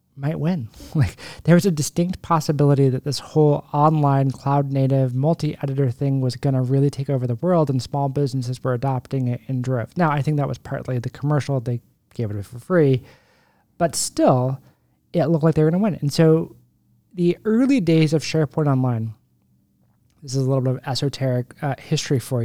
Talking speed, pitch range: 190 wpm, 125-155 Hz